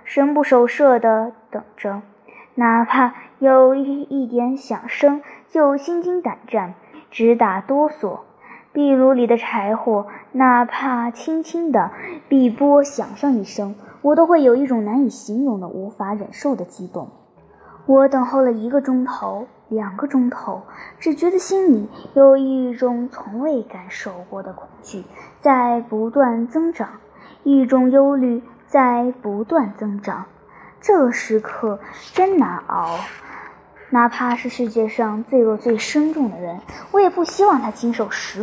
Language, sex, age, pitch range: Chinese, male, 20-39, 220-280 Hz